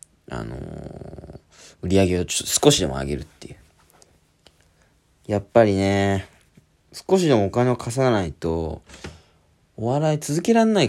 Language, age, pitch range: Japanese, 20-39, 80-130 Hz